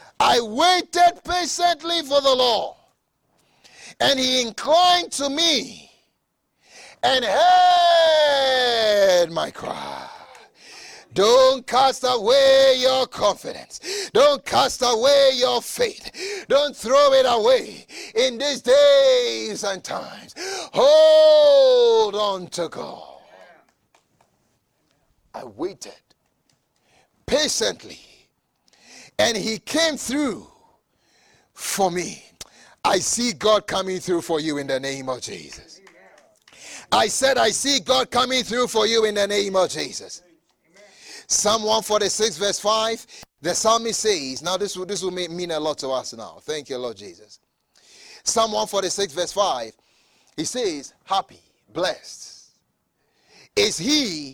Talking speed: 120 wpm